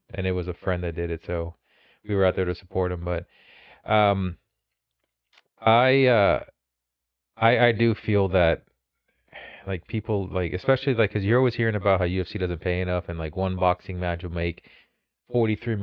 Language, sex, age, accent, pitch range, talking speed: English, male, 30-49, American, 90-105 Hz, 180 wpm